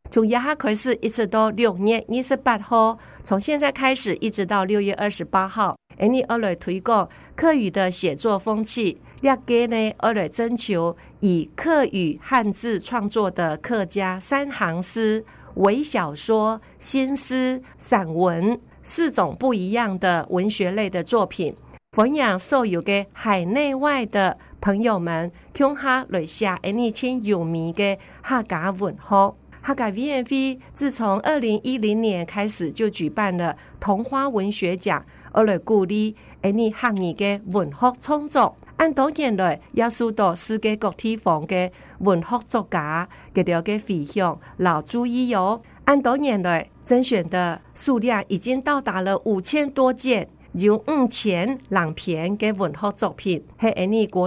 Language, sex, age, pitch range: Chinese, female, 50-69, 185-245 Hz